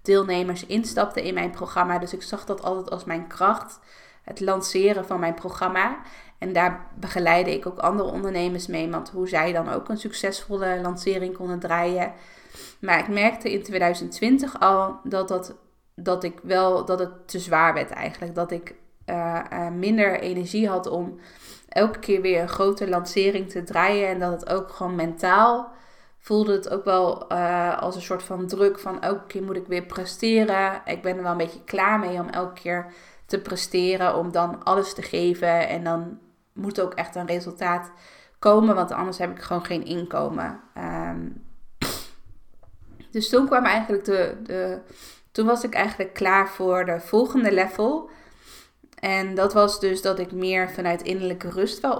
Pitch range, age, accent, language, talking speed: 175-200 Hz, 20-39, Dutch, Dutch, 180 wpm